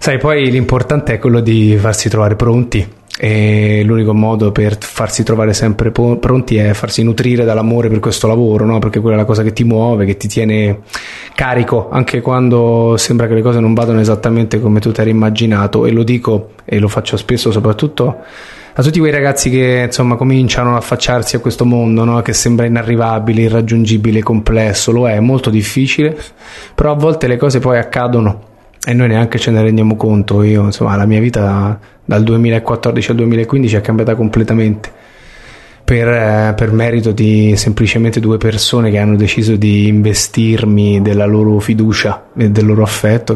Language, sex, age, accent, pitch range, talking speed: English, male, 20-39, Italian, 110-120 Hz, 175 wpm